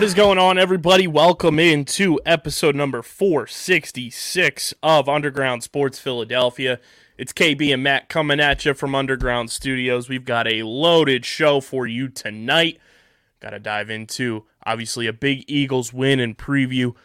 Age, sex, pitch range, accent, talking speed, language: 20-39, male, 120-140 Hz, American, 150 wpm, English